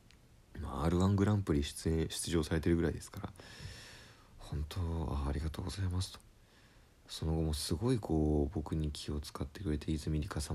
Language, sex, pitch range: Japanese, male, 80-110 Hz